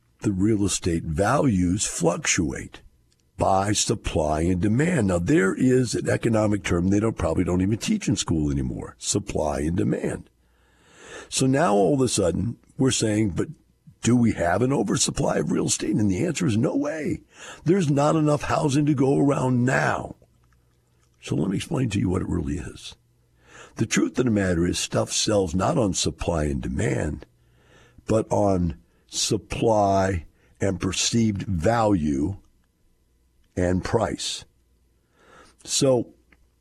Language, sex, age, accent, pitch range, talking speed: English, male, 60-79, American, 80-115 Hz, 150 wpm